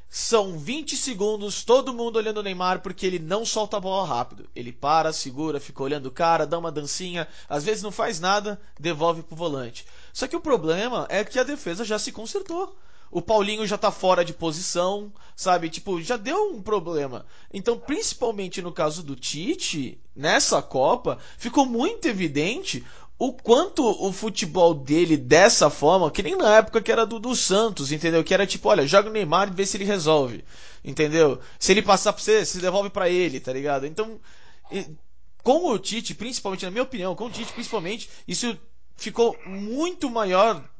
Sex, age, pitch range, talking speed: male, 20-39, 170-225 Hz, 185 wpm